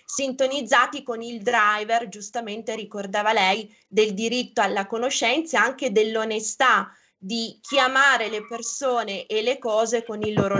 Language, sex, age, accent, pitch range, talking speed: Italian, female, 20-39, native, 210-245 Hz, 135 wpm